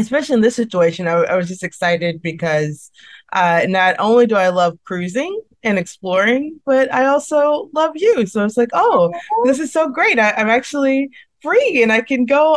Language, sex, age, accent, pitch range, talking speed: English, female, 20-39, American, 185-255 Hz, 195 wpm